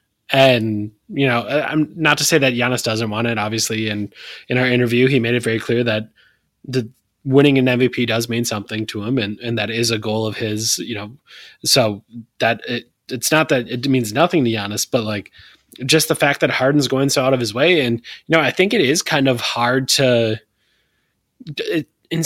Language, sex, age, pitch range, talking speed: English, male, 20-39, 115-140 Hz, 215 wpm